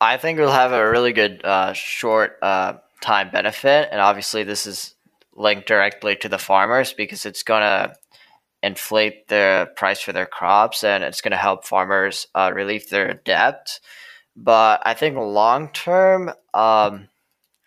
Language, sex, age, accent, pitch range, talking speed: English, male, 10-29, American, 105-140 Hz, 160 wpm